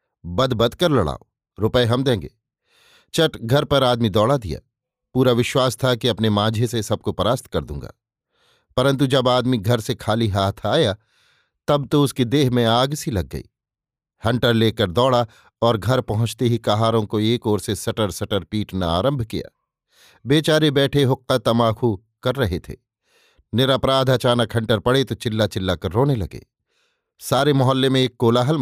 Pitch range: 115-140 Hz